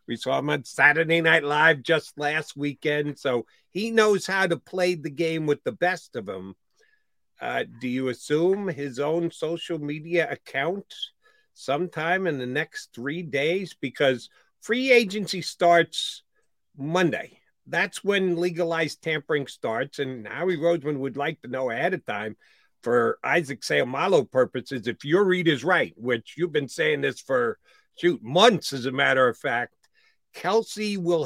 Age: 50-69